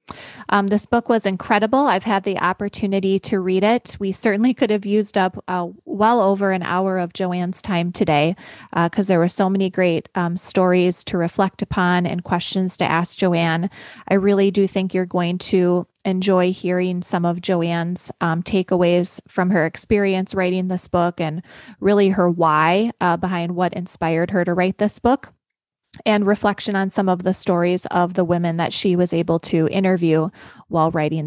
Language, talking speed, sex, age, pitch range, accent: English, 180 wpm, female, 20-39, 175-200 Hz, American